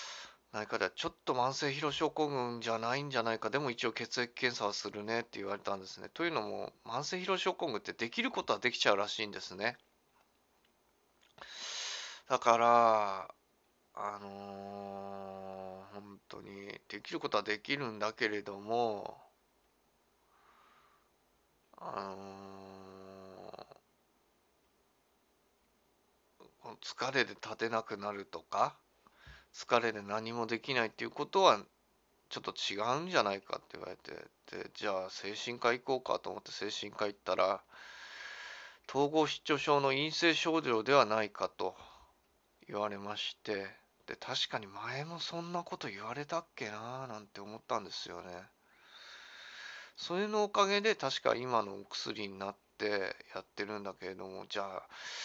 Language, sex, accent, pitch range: Japanese, male, native, 100-145 Hz